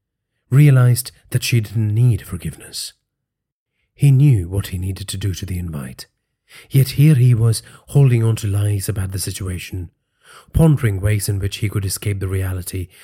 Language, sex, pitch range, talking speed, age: English, male, 95-125 Hz, 165 wpm, 40-59